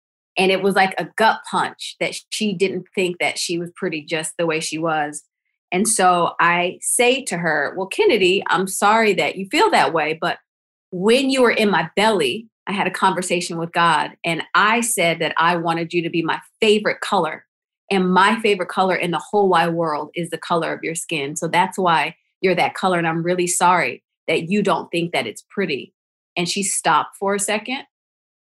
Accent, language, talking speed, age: American, English, 205 wpm, 30-49